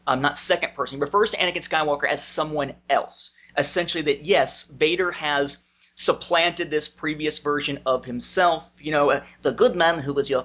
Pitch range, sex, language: 145-180 Hz, male, English